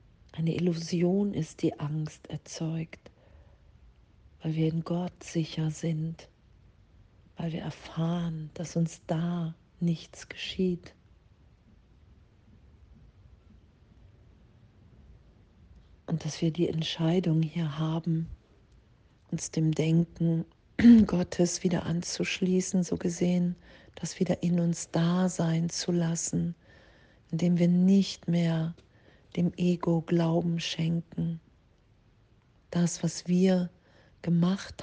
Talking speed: 95 wpm